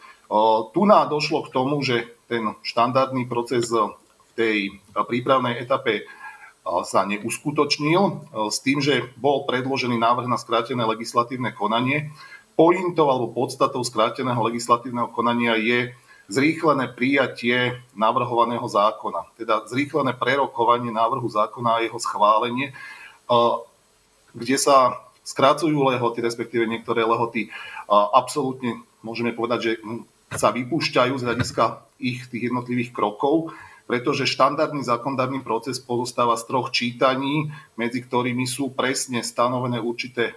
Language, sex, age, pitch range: Slovak, male, 40-59, 115-135 Hz